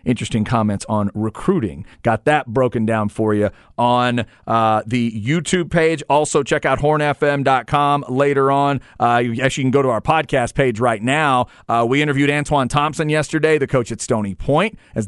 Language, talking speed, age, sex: English, 175 wpm, 40-59, male